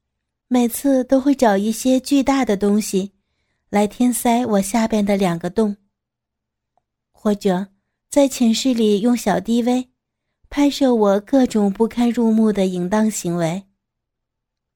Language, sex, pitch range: Chinese, female, 195-245 Hz